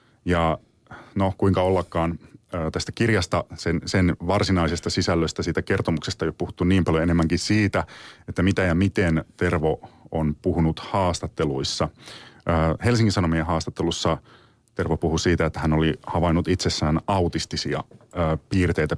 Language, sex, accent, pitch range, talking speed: Finnish, male, native, 80-95 Hz, 125 wpm